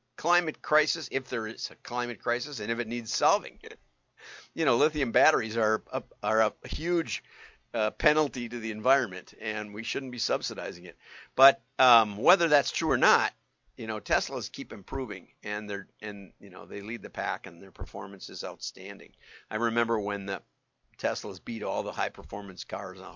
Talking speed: 185 wpm